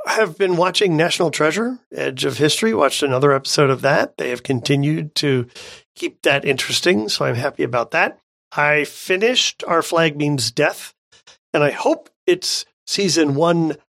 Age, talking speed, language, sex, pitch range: 40-59, 165 wpm, English, male, 130-170 Hz